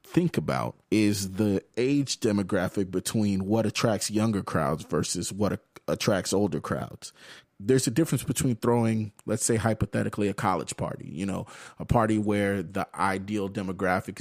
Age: 30-49